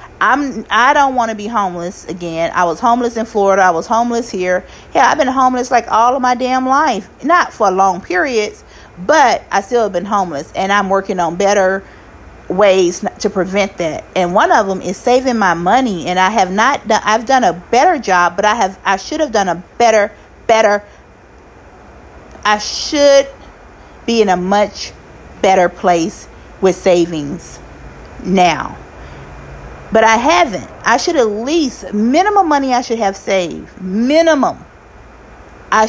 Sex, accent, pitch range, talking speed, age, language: female, American, 185-255 Hz, 165 wpm, 40-59, English